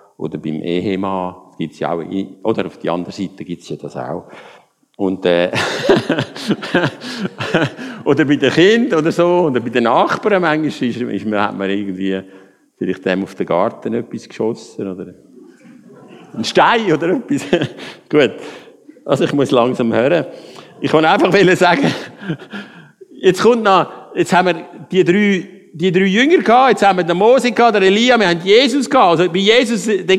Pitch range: 120-195 Hz